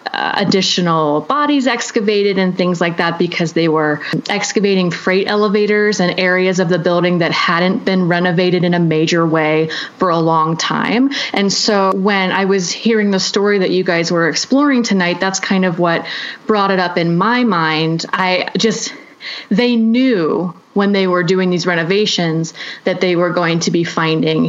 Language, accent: English, American